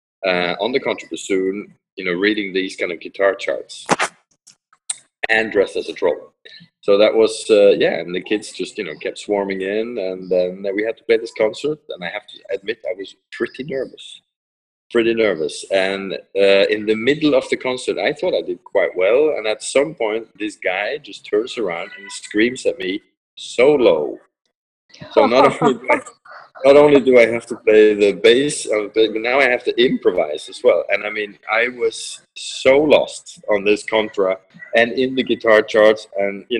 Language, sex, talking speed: English, male, 190 wpm